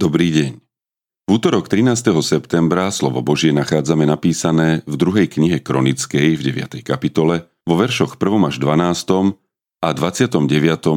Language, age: Slovak, 40-59